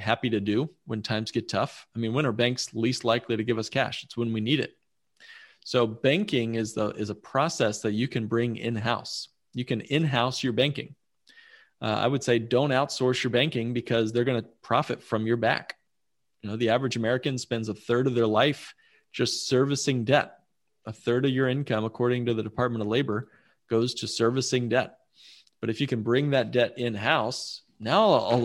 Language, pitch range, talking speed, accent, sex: English, 115-135 Hz, 200 wpm, American, male